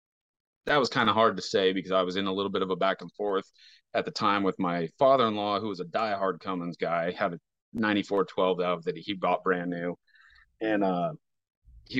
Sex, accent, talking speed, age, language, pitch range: male, American, 235 wpm, 30-49, English, 90-115 Hz